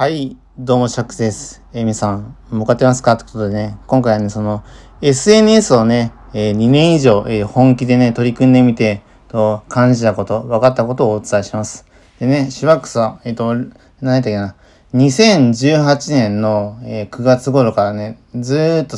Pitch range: 110-130 Hz